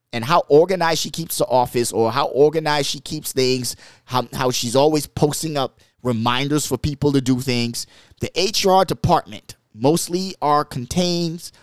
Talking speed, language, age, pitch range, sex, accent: 160 wpm, English, 20-39, 115-150 Hz, male, American